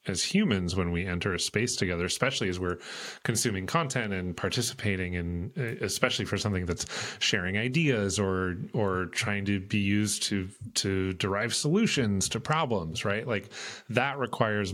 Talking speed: 155 wpm